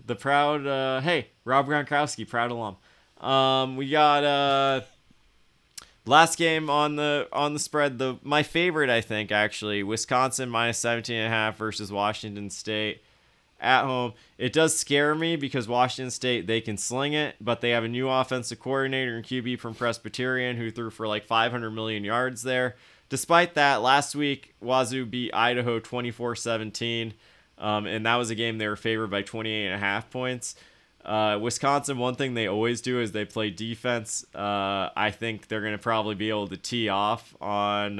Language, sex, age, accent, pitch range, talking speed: English, male, 20-39, American, 105-130 Hz, 180 wpm